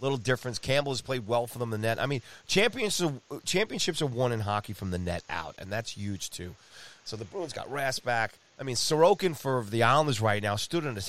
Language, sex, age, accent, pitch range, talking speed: English, male, 30-49, American, 100-150 Hz, 240 wpm